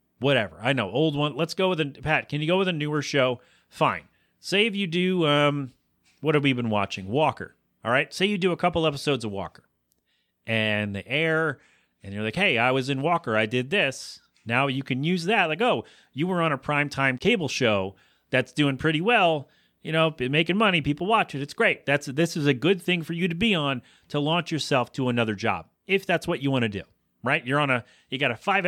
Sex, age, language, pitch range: male, 30-49, English, 120-165 Hz